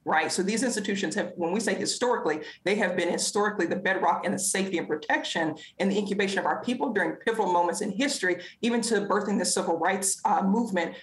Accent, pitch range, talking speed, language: American, 175-225 Hz, 210 wpm, English